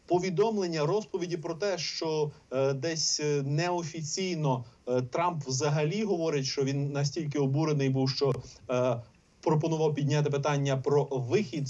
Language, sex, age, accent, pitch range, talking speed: Ukrainian, male, 30-49, native, 130-165 Hz, 125 wpm